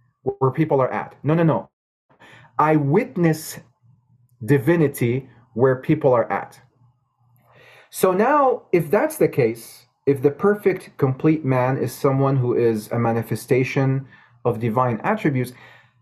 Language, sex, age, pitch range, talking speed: English, male, 30-49, 125-150 Hz, 125 wpm